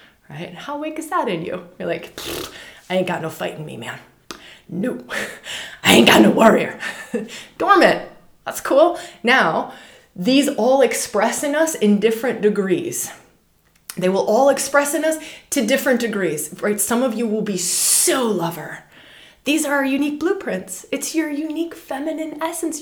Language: English